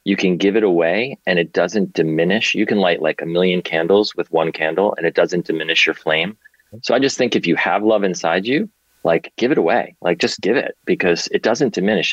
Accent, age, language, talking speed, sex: American, 30-49, English, 235 wpm, male